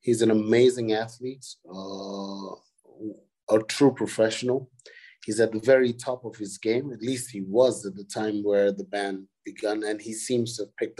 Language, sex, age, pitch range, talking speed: English, male, 30-49, 105-120 Hz, 180 wpm